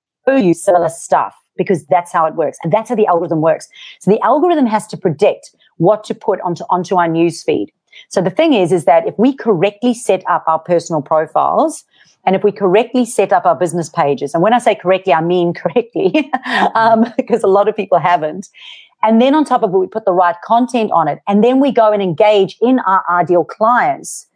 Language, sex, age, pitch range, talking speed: English, female, 40-59, 175-225 Hz, 220 wpm